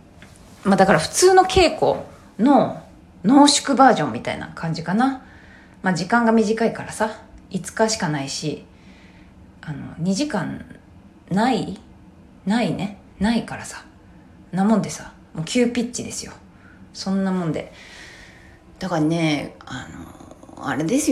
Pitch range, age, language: 195-315 Hz, 20-39, Japanese